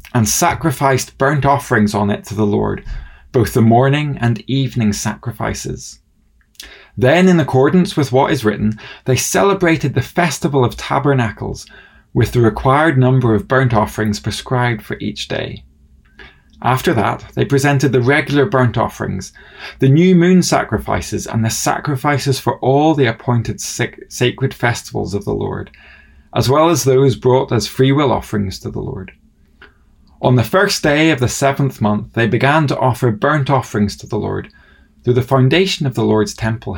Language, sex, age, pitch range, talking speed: English, male, 20-39, 105-140 Hz, 160 wpm